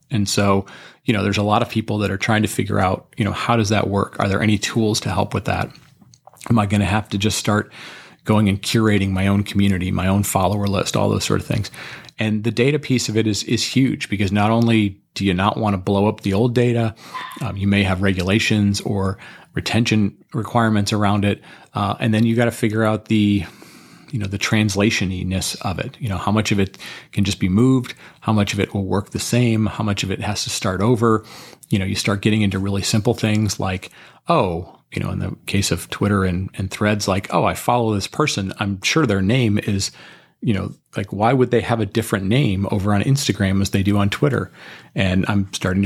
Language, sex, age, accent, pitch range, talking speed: English, male, 30-49, American, 100-115 Hz, 235 wpm